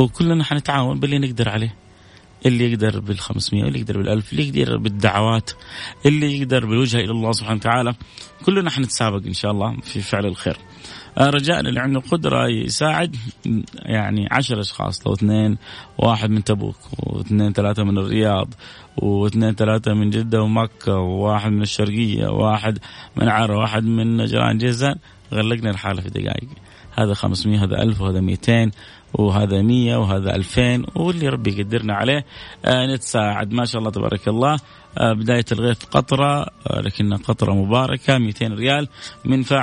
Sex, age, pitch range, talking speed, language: male, 30-49, 105-125 Hz, 145 wpm, Arabic